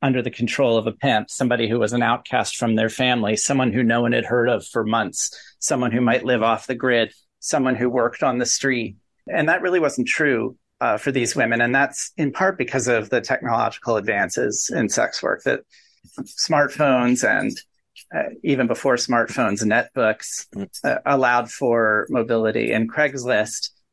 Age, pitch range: 40-59, 115-130 Hz